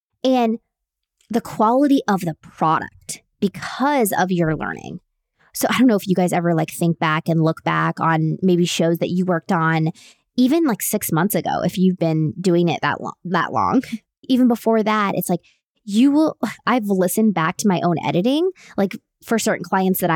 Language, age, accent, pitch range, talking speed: English, 20-39, American, 180-255 Hz, 190 wpm